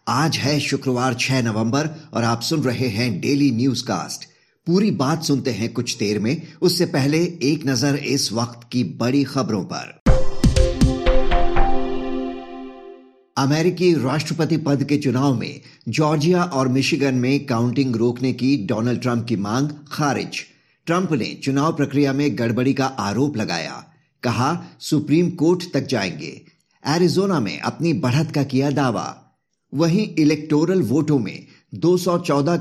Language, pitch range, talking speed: Hindi, 120-150 Hz, 135 wpm